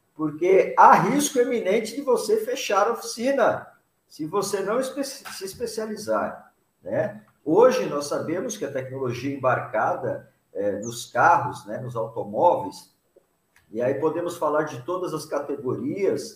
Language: Portuguese